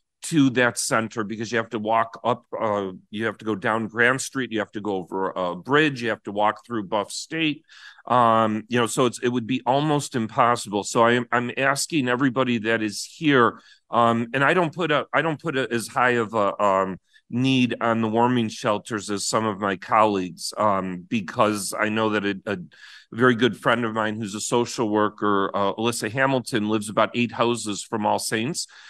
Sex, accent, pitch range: male, American, 105-125 Hz